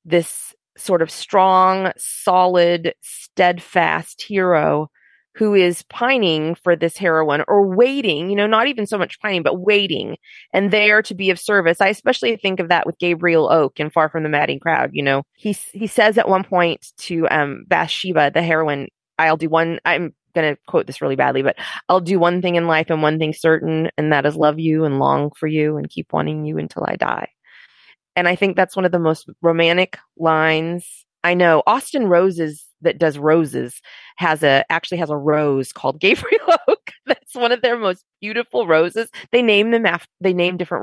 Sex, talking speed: female, 195 wpm